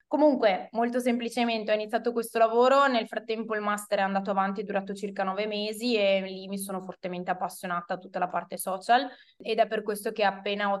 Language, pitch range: Italian, 195-230 Hz